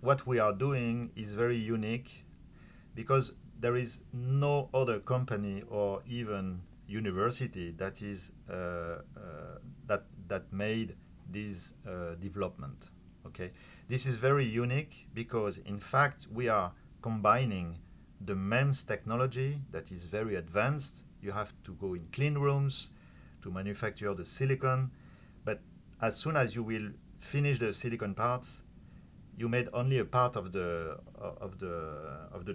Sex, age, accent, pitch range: male, 40-59, French, 95-130 Hz